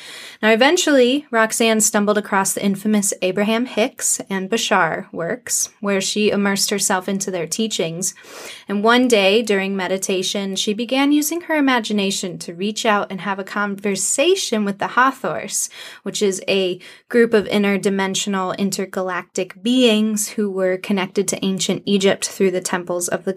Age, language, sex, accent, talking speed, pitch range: 20-39, English, female, American, 150 wpm, 195-230 Hz